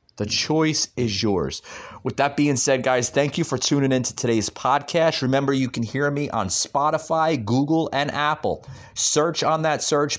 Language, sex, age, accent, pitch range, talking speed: English, male, 30-49, American, 115-155 Hz, 175 wpm